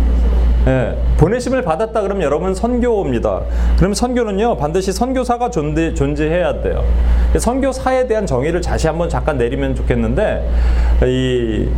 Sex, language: male, Korean